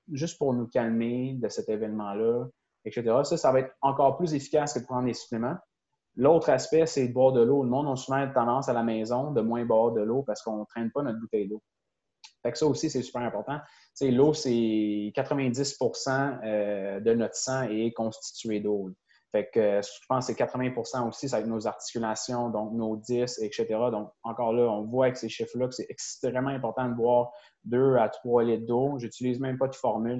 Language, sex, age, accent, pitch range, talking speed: French, male, 20-39, Canadian, 110-130 Hz, 205 wpm